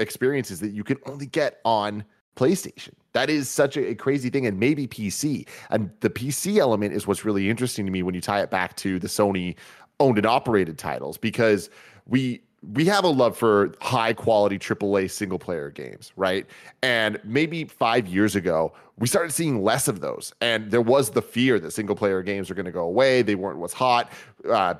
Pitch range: 100-125 Hz